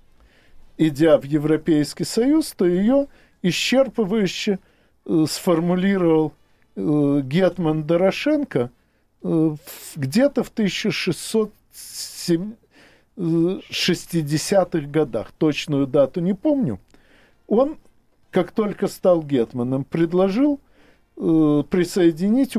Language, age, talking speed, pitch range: Russian, 50-69, 65 wpm, 140-195 Hz